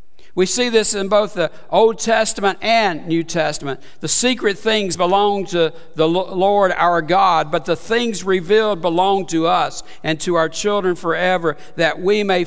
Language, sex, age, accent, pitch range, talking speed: English, male, 60-79, American, 160-200 Hz, 170 wpm